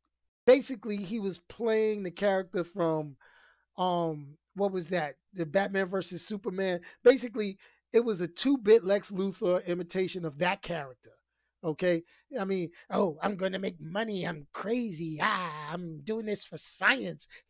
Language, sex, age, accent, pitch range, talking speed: English, male, 30-49, American, 175-230 Hz, 145 wpm